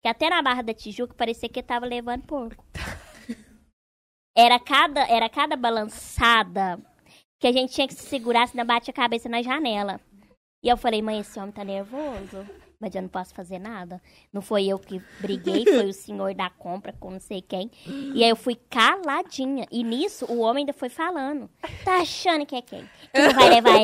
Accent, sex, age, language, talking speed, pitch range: Brazilian, male, 20-39, Portuguese, 195 wpm, 230-300 Hz